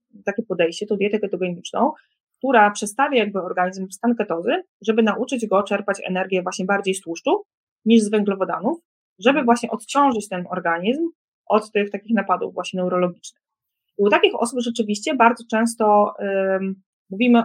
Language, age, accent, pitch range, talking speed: Polish, 20-39, native, 185-230 Hz, 150 wpm